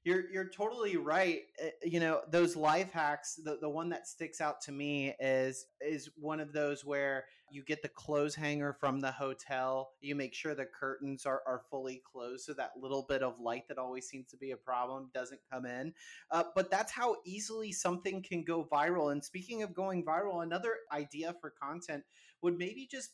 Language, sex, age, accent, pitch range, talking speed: English, male, 30-49, American, 135-175 Hz, 200 wpm